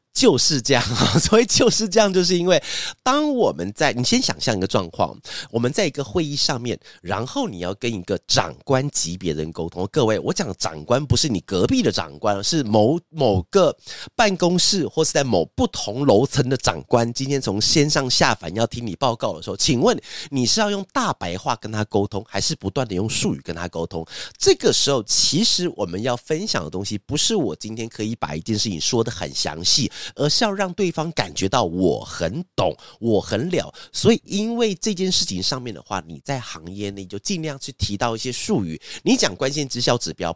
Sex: male